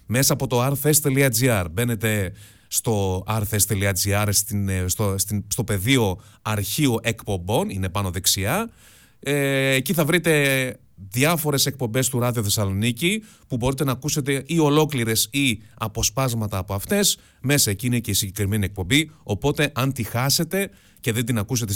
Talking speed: 125 wpm